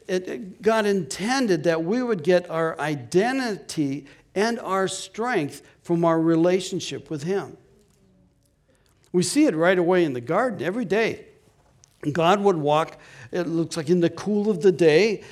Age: 60-79